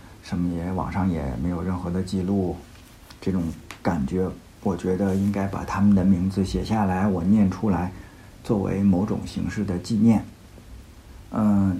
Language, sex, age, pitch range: Chinese, male, 50-69, 90-115 Hz